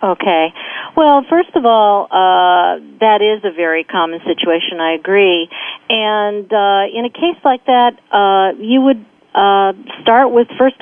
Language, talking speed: English, 155 wpm